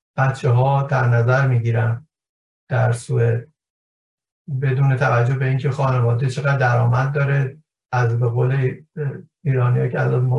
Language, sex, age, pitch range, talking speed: Persian, male, 50-69, 125-155 Hz, 120 wpm